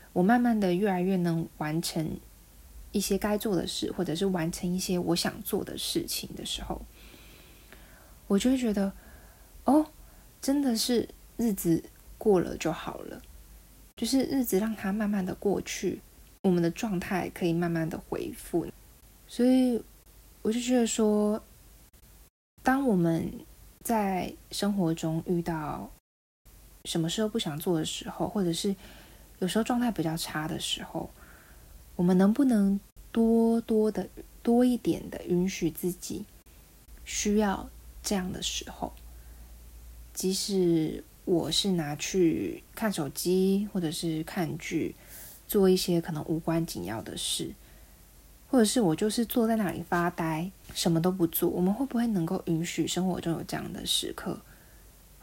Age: 20-39